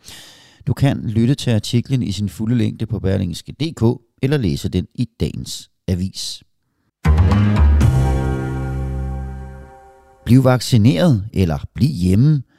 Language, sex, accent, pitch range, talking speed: Danish, male, native, 85-120 Hz, 105 wpm